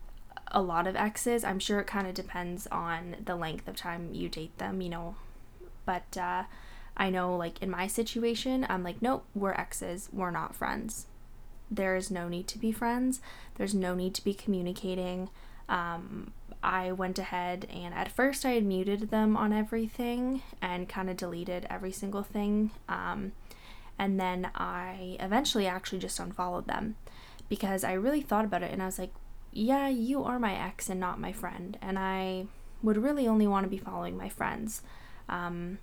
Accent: American